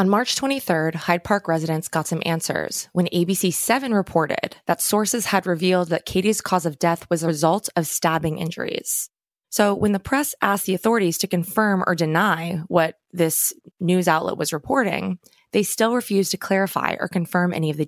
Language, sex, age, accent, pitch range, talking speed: English, female, 20-39, American, 165-200 Hz, 185 wpm